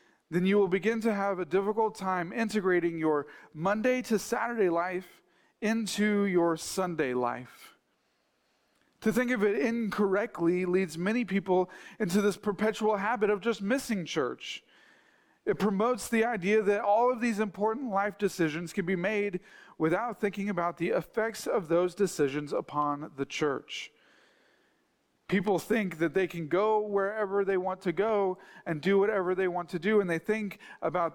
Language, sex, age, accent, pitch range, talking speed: English, male, 40-59, American, 155-205 Hz, 160 wpm